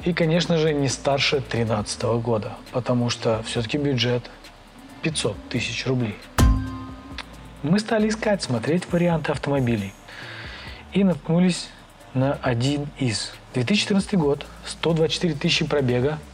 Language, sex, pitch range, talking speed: Russian, male, 120-155 Hz, 110 wpm